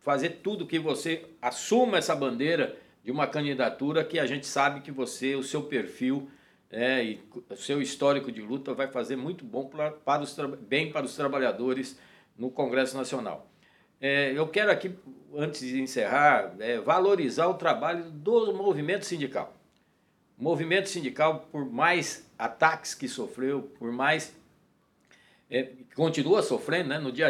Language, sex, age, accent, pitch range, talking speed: Portuguese, male, 60-79, Brazilian, 130-165 Hz, 150 wpm